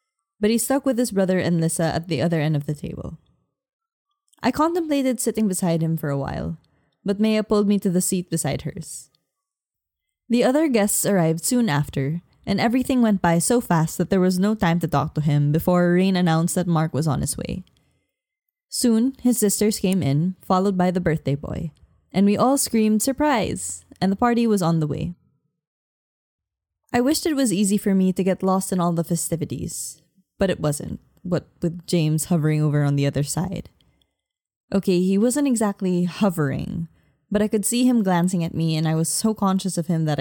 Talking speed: 195 wpm